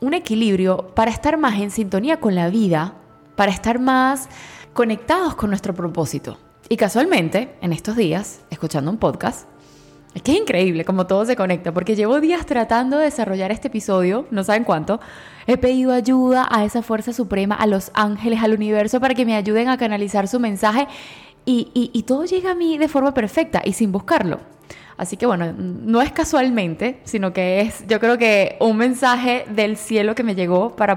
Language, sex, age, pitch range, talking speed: Spanish, female, 20-39, 185-240 Hz, 190 wpm